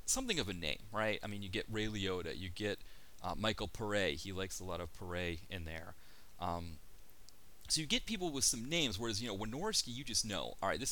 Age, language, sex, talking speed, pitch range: 30-49, English, male, 230 wpm, 90-125 Hz